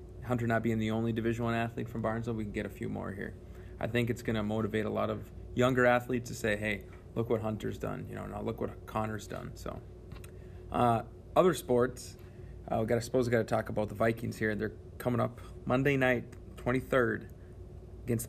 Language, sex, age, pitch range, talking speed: English, male, 30-49, 100-120 Hz, 215 wpm